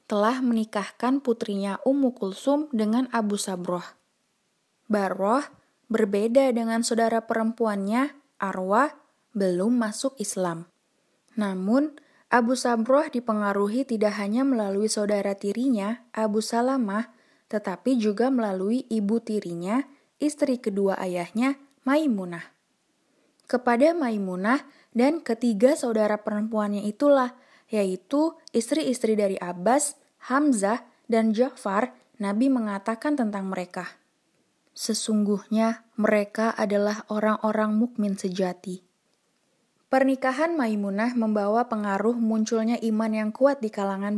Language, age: Indonesian, 20-39